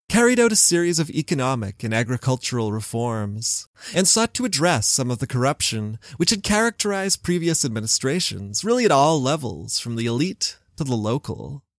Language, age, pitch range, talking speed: English, 30-49, 110-155 Hz, 165 wpm